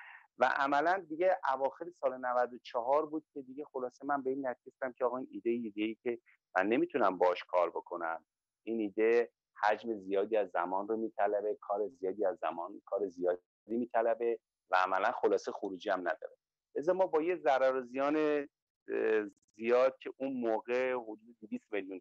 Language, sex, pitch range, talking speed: Persian, male, 110-170 Hz, 165 wpm